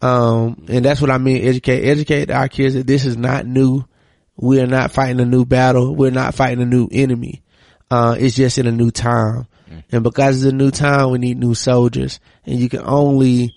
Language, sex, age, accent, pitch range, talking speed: English, male, 20-39, American, 120-135 Hz, 215 wpm